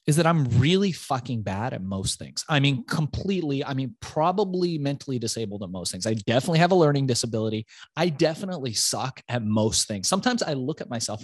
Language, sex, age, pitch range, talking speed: English, male, 20-39, 120-170 Hz, 200 wpm